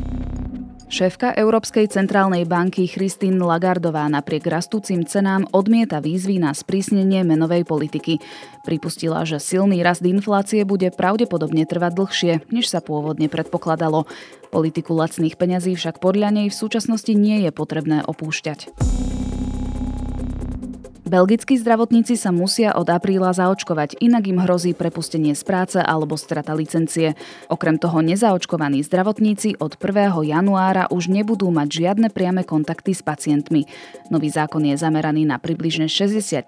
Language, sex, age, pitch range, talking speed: Slovak, female, 20-39, 155-195 Hz, 130 wpm